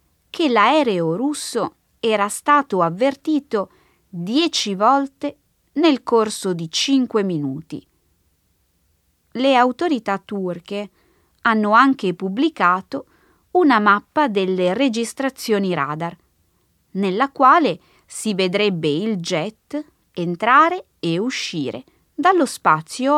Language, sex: Italian, female